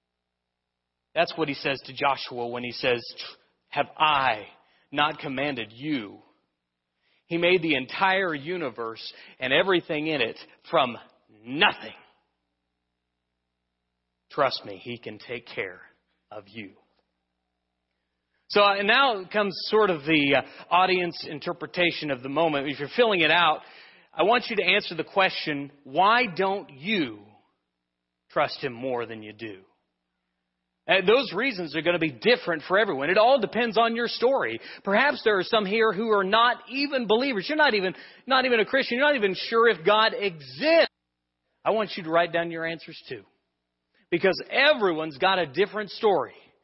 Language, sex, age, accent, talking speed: English, male, 40-59, American, 150 wpm